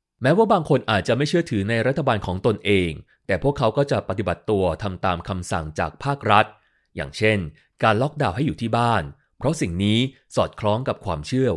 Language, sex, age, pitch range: Thai, male, 30-49, 90-130 Hz